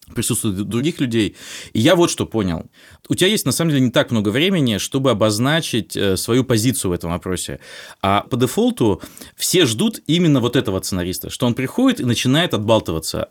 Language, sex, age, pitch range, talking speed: Russian, male, 20-39, 115-165 Hz, 180 wpm